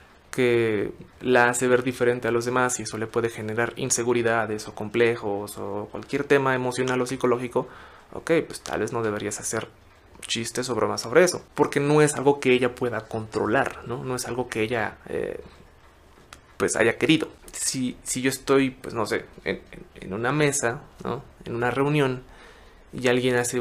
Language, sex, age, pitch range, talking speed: Spanish, male, 20-39, 115-140 Hz, 180 wpm